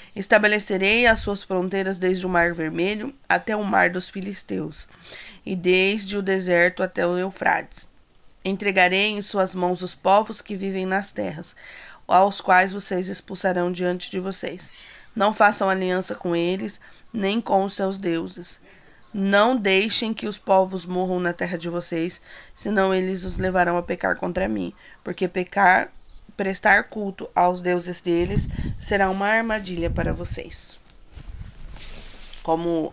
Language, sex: Portuguese, female